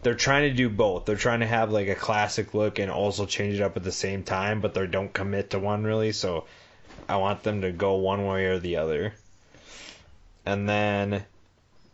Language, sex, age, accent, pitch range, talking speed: English, male, 20-39, American, 95-110 Hz, 210 wpm